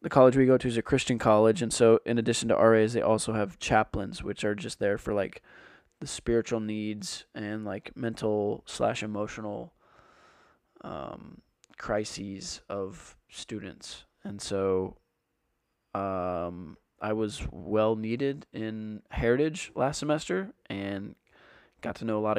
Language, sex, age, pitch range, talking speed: English, male, 20-39, 105-115 Hz, 135 wpm